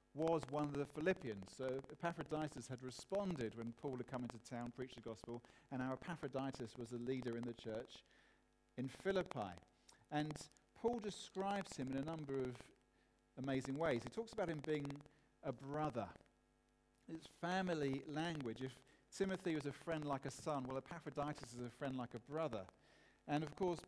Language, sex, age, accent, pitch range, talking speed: English, male, 40-59, British, 125-165 Hz, 170 wpm